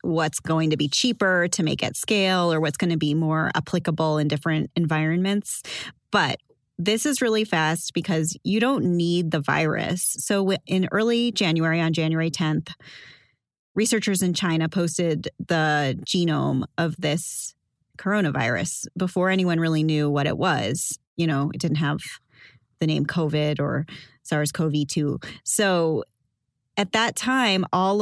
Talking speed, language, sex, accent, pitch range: 145 wpm, English, female, American, 160-195 Hz